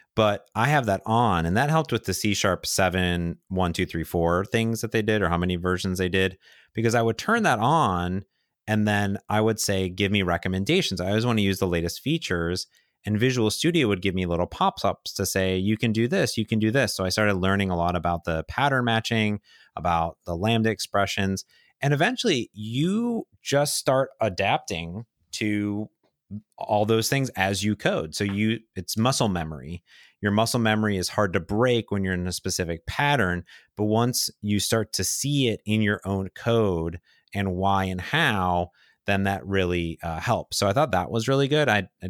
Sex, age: male, 30-49